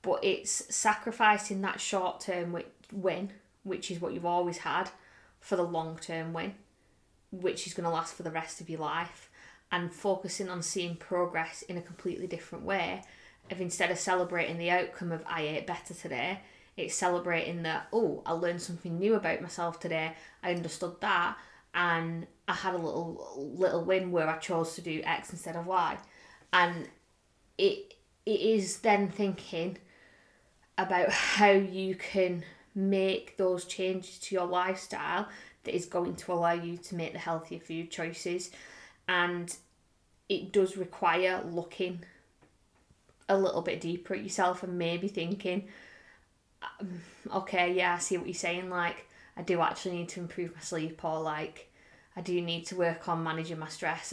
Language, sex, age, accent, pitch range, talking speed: English, female, 20-39, British, 170-190 Hz, 165 wpm